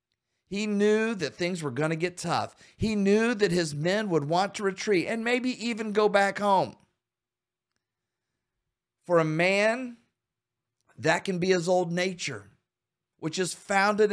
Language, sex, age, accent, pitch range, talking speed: English, male, 50-69, American, 155-205 Hz, 155 wpm